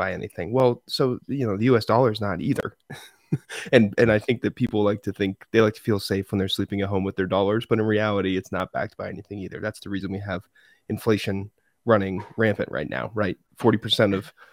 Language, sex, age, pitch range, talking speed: English, male, 20-39, 100-115 Hz, 225 wpm